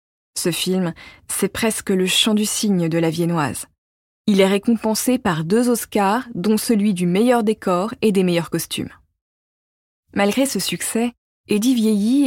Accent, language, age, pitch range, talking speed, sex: French, French, 20-39, 170-220 Hz, 150 wpm, female